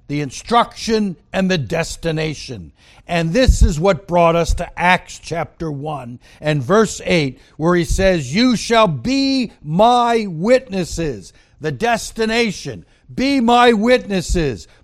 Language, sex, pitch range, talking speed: English, male, 170-230 Hz, 125 wpm